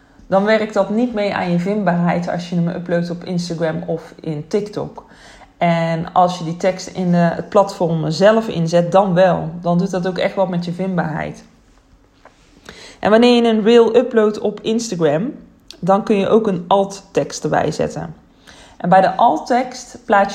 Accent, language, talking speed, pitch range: Dutch, Dutch, 175 wpm, 170-205 Hz